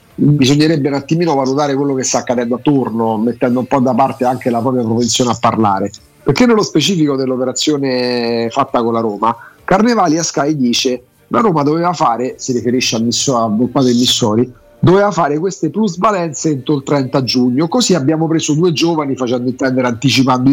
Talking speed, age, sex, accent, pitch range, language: 175 wpm, 40-59, male, native, 125-160 Hz, Italian